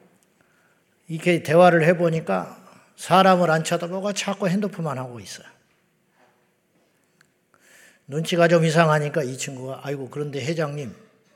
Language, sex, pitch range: Korean, male, 135-180 Hz